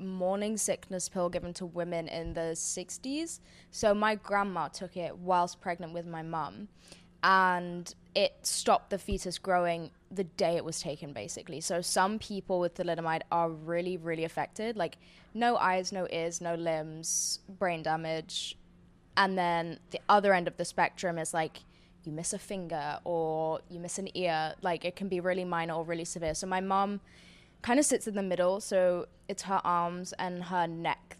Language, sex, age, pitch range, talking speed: English, female, 10-29, 165-190 Hz, 180 wpm